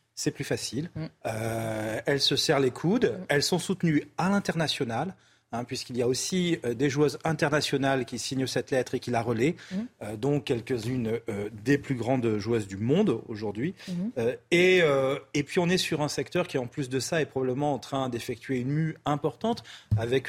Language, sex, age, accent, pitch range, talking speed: French, male, 40-59, French, 125-165 Hz, 195 wpm